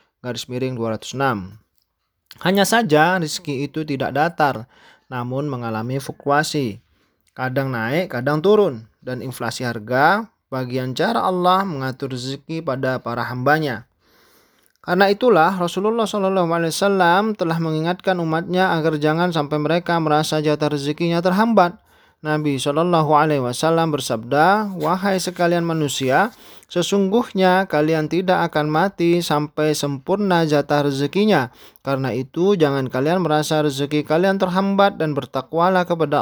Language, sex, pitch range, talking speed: Indonesian, male, 135-180 Hz, 115 wpm